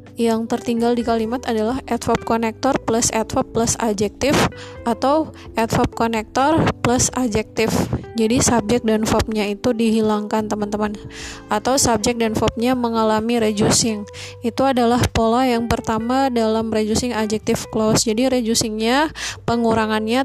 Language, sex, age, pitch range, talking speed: Indonesian, female, 20-39, 220-240 Hz, 120 wpm